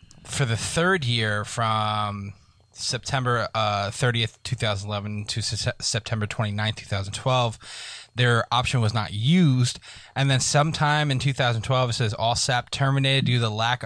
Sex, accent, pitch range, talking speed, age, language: male, American, 110-130 Hz, 140 wpm, 20-39, English